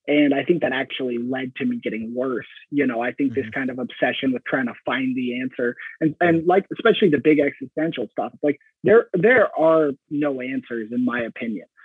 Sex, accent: male, American